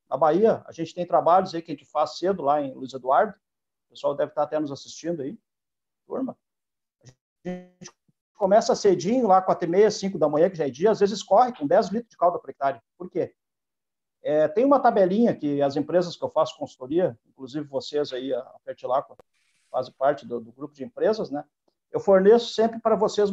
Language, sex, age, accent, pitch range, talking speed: Portuguese, male, 50-69, Brazilian, 160-215 Hz, 210 wpm